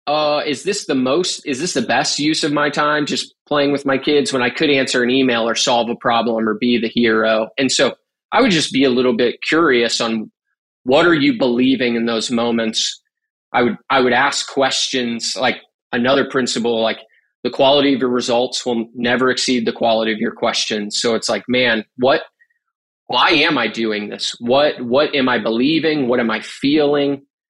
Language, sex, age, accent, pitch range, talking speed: English, male, 20-39, American, 115-140 Hz, 200 wpm